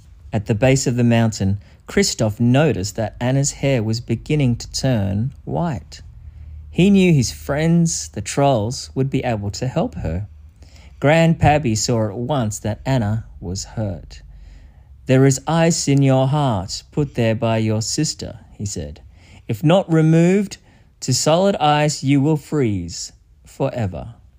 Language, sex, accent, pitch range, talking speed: English, male, Australian, 100-140 Hz, 145 wpm